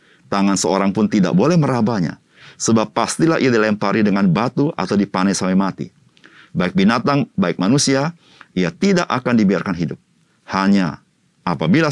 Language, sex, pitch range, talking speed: Indonesian, male, 90-140 Hz, 135 wpm